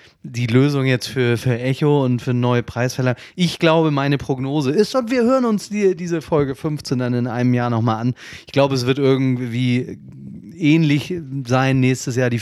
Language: German